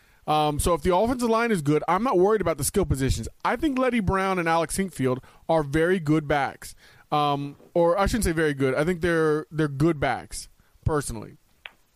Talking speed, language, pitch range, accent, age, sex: 200 wpm, English, 150-185 Hz, American, 20-39, male